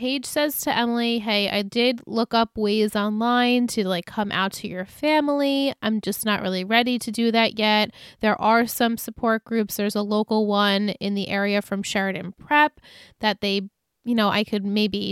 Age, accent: 20-39, American